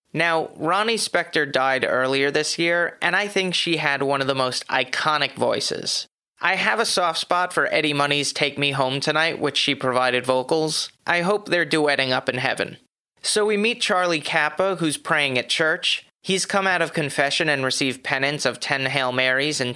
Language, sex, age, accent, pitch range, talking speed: English, male, 30-49, American, 135-170 Hz, 190 wpm